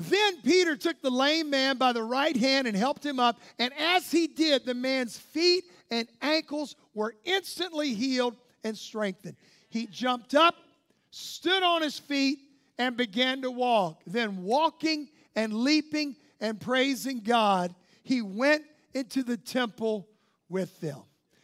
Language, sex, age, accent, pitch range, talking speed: English, male, 50-69, American, 235-280 Hz, 150 wpm